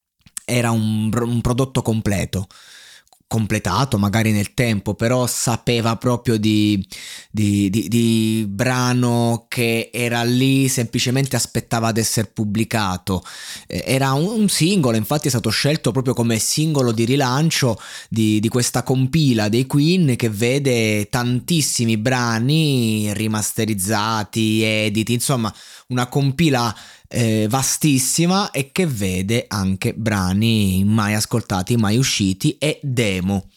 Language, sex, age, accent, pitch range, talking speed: Italian, male, 20-39, native, 110-135 Hz, 115 wpm